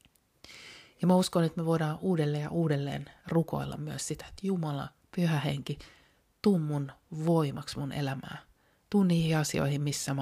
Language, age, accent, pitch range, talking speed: Finnish, 30-49, native, 145-165 Hz, 145 wpm